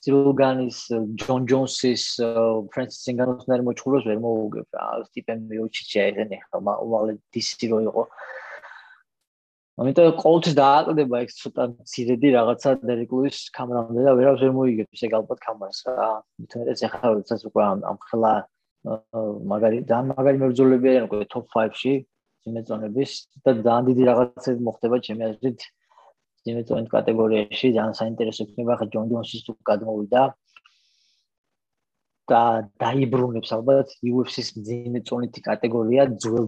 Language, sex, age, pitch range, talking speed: English, male, 20-39, 110-130 Hz, 65 wpm